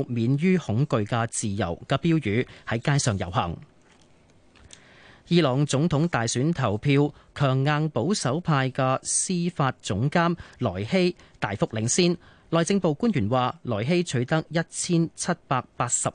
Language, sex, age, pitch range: Chinese, male, 30-49, 115-160 Hz